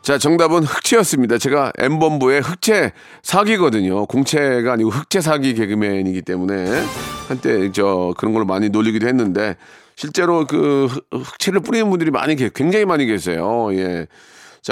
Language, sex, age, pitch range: Korean, male, 40-59, 130-175 Hz